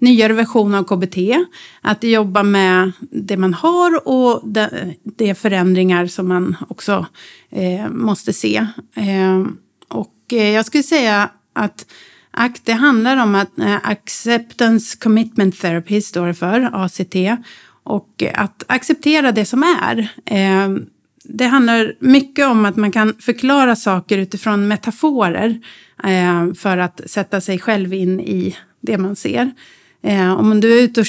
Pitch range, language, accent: 195-250 Hz, Swedish, native